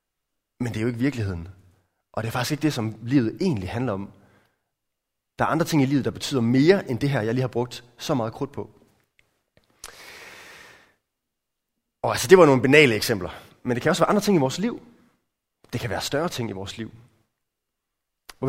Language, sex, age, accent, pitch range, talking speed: Danish, male, 30-49, native, 110-145 Hz, 205 wpm